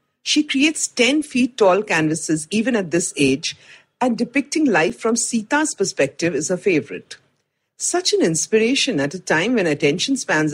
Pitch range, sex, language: 155-255 Hz, female, English